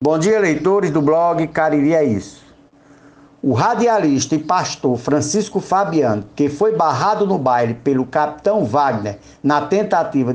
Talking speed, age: 140 wpm, 60-79